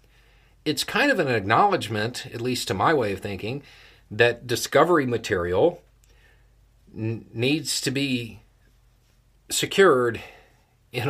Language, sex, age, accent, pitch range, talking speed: English, male, 50-69, American, 110-140 Hz, 110 wpm